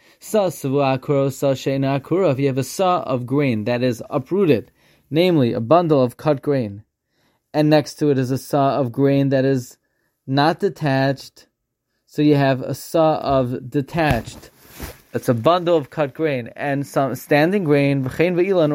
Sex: male